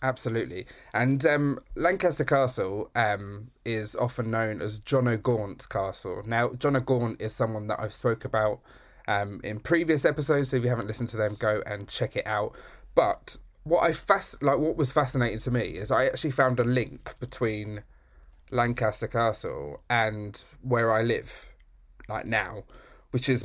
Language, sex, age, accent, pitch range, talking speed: English, male, 20-39, British, 110-130 Hz, 165 wpm